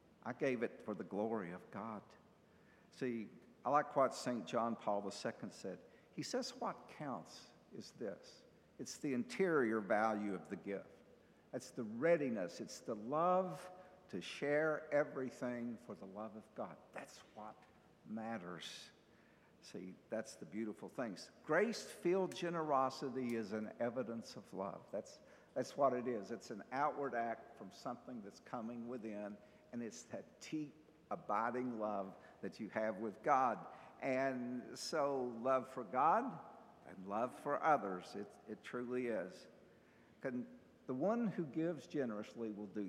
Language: English